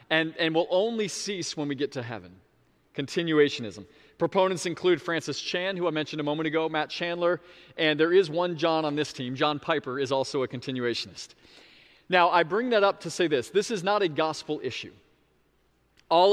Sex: male